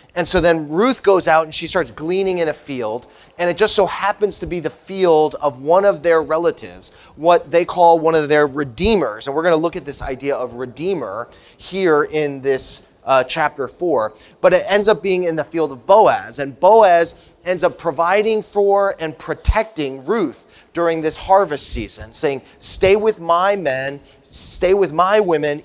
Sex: male